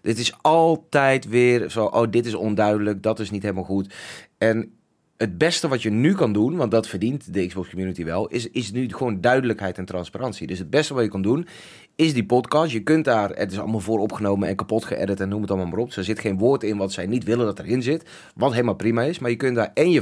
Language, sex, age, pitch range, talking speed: Dutch, male, 30-49, 100-130 Hz, 255 wpm